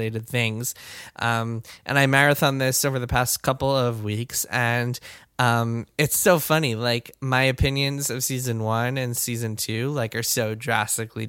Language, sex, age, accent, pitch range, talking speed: English, male, 10-29, American, 115-135 Hz, 160 wpm